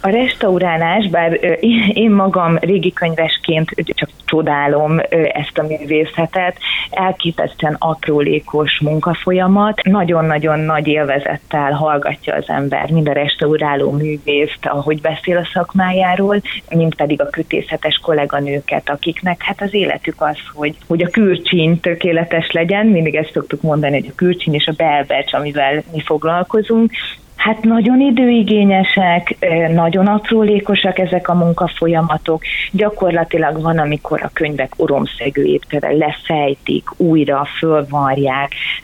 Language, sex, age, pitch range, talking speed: Hungarian, female, 30-49, 150-180 Hz, 115 wpm